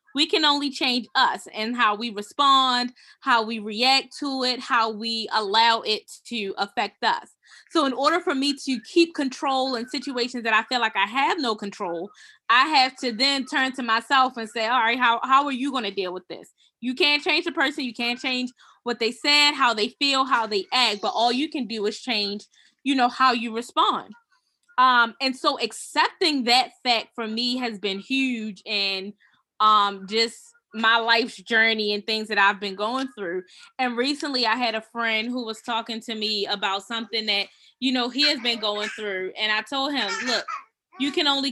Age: 20-39